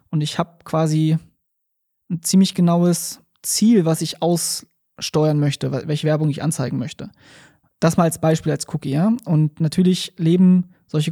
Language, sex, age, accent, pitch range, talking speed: German, male, 20-39, German, 150-175 Hz, 150 wpm